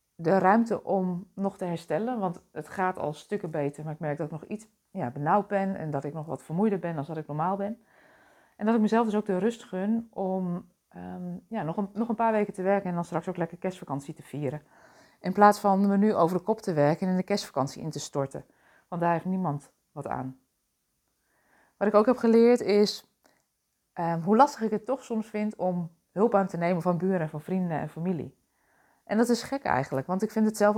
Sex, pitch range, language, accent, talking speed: female, 165-210 Hz, Dutch, Dutch, 230 wpm